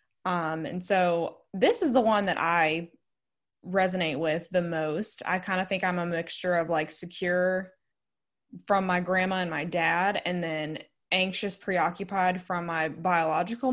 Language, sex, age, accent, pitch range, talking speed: English, female, 20-39, American, 170-205 Hz, 155 wpm